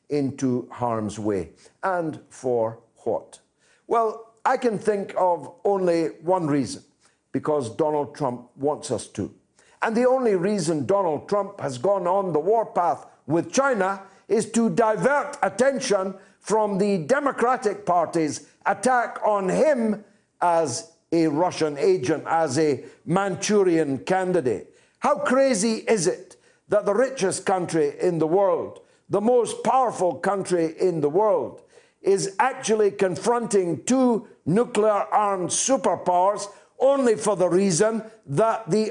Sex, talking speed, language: male, 130 wpm, English